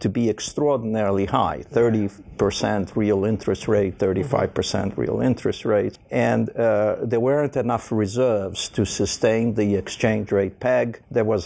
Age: 50-69